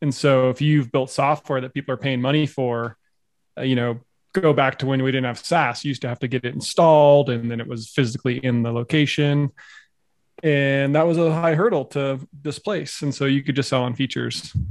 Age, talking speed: 30-49, 220 wpm